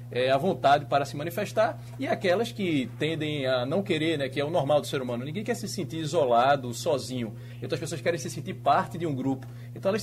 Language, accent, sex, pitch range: Portuguese, Brazilian, male, 130-165 Hz